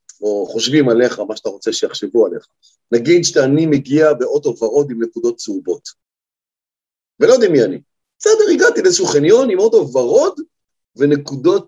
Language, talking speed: Hebrew, 145 wpm